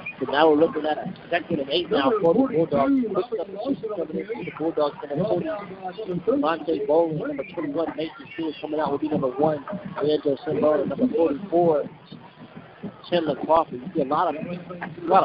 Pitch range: 155-200 Hz